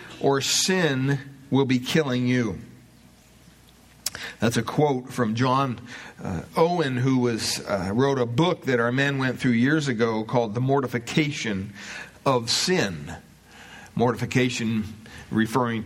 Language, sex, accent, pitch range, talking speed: English, male, American, 125-160 Hz, 125 wpm